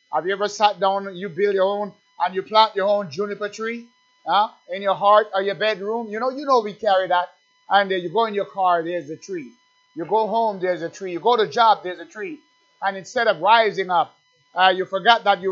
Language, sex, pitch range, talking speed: English, male, 185-225 Hz, 245 wpm